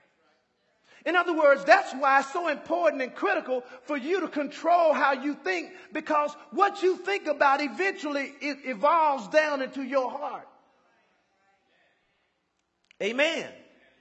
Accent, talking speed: American, 130 wpm